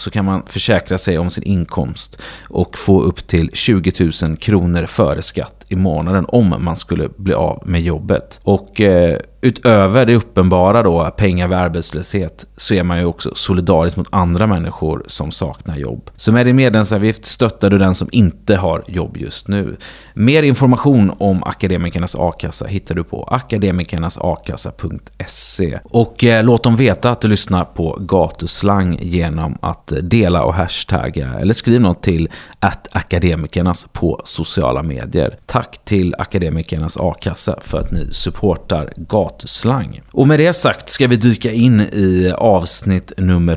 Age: 30-49